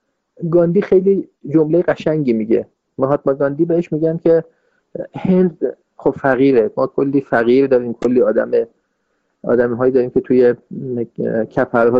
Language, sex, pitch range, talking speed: Persian, male, 120-165 Hz, 130 wpm